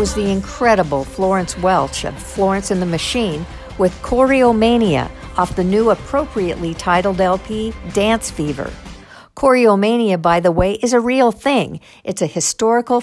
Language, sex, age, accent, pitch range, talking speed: English, female, 60-79, American, 175-220 Hz, 145 wpm